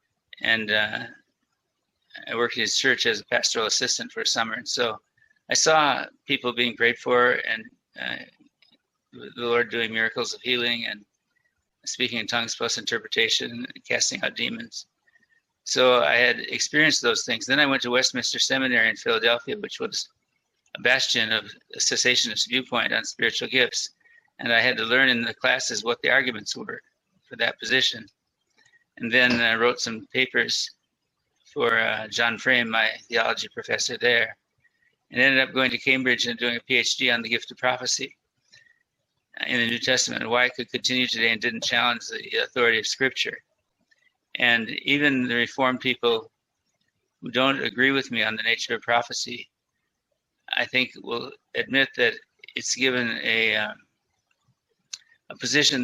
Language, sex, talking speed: English, male, 160 wpm